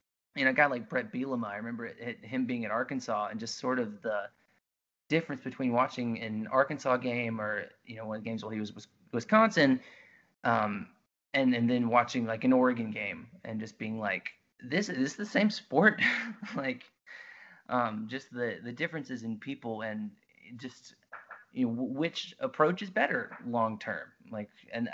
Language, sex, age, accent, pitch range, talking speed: English, male, 20-39, American, 115-185 Hz, 190 wpm